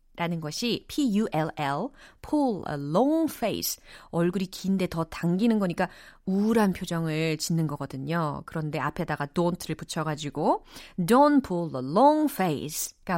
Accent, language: native, Korean